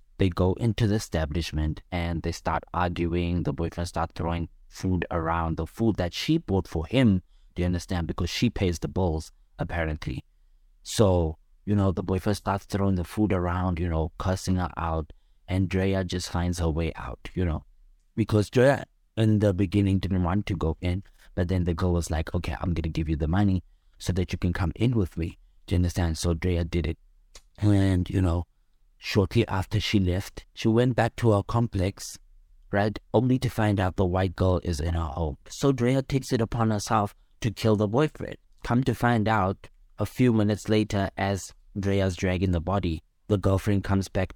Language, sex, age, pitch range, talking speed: English, male, 20-39, 85-105 Hz, 195 wpm